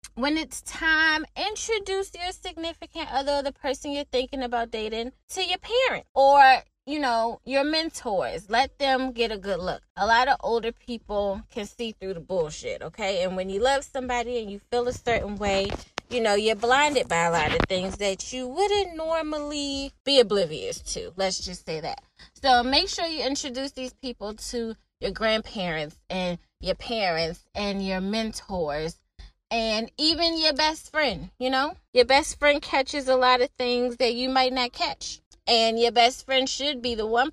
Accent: American